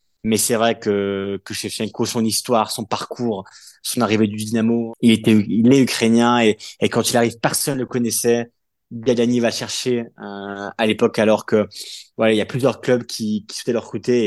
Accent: French